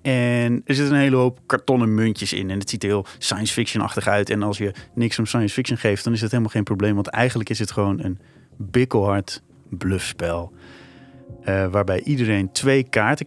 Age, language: 30-49, Dutch